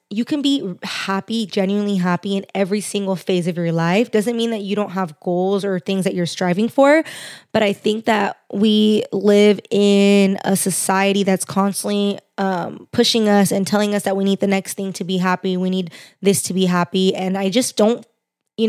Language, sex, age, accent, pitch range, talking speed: English, female, 20-39, American, 185-210 Hz, 200 wpm